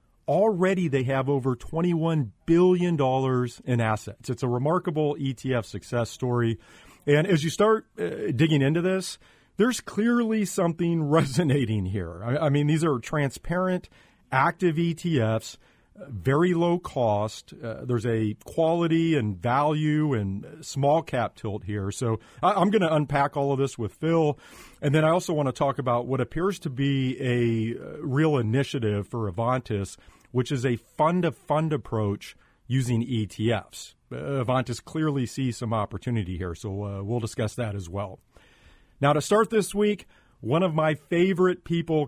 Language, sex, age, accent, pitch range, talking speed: English, male, 40-59, American, 115-160 Hz, 155 wpm